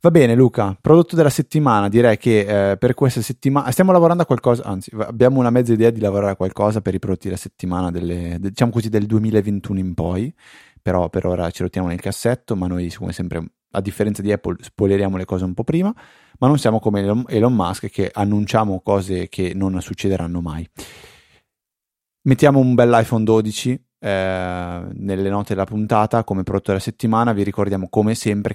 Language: Italian